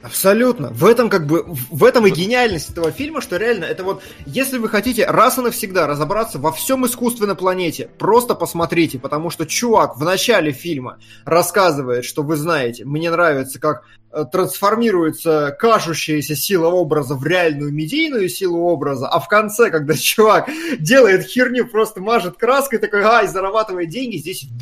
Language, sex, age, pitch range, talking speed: Russian, male, 20-39, 135-195 Hz, 160 wpm